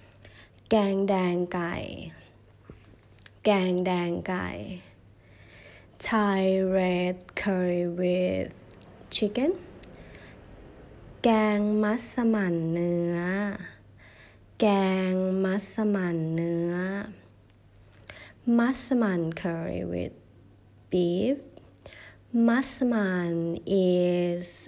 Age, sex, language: 20-39, female, Thai